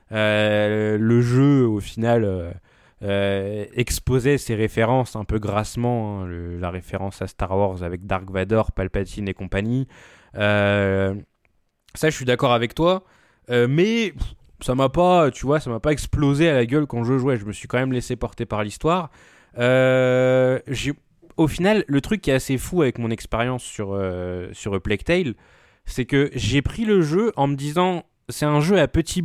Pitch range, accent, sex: 110-140 Hz, French, male